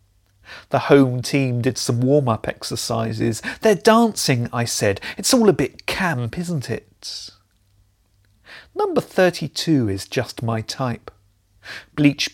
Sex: male